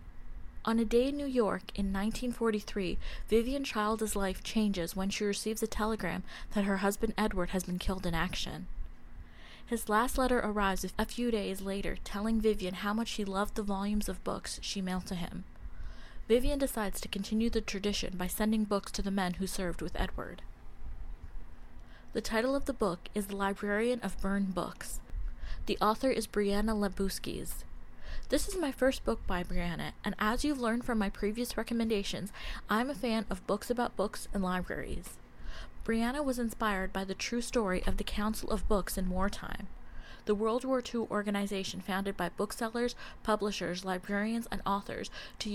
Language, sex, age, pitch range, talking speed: English, female, 20-39, 190-225 Hz, 175 wpm